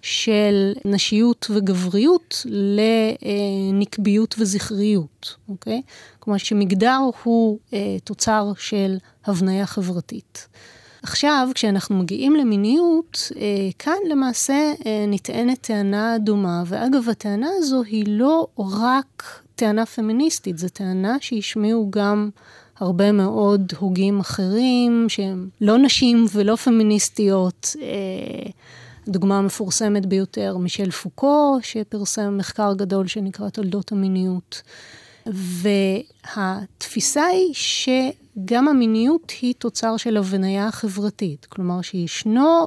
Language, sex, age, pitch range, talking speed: Hebrew, female, 30-49, 195-230 Hz, 95 wpm